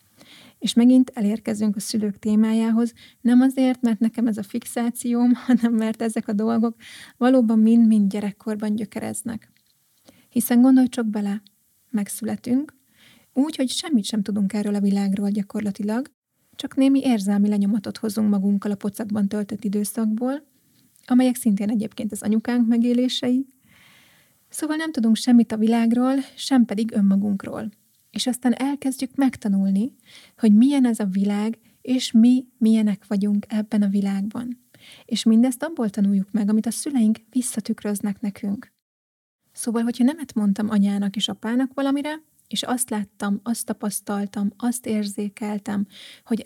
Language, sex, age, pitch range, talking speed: Hungarian, female, 30-49, 210-245 Hz, 135 wpm